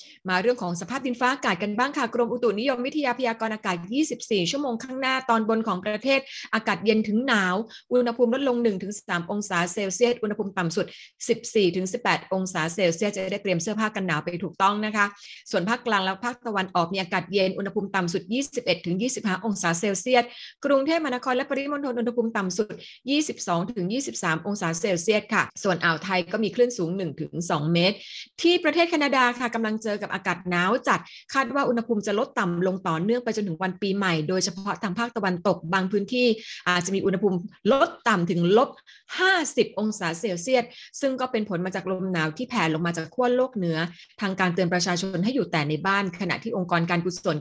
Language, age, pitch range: Thai, 30-49, 180-240 Hz